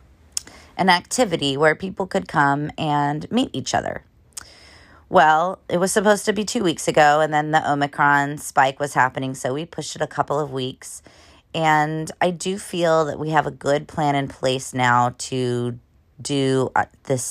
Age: 30-49